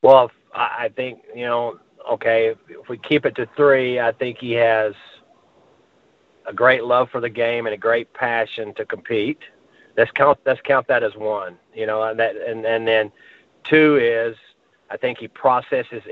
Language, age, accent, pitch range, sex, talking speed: English, 40-59, American, 115-130 Hz, male, 180 wpm